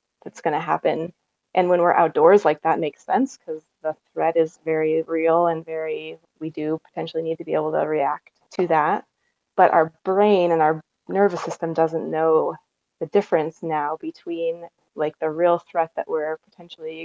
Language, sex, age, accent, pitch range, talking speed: English, female, 20-39, American, 160-220 Hz, 180 wpm